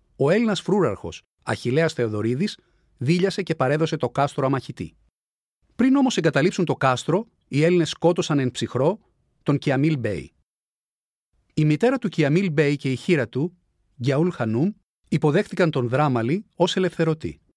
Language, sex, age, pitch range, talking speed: Greek, male, 40-59, 125-175 Hz, 135 wpm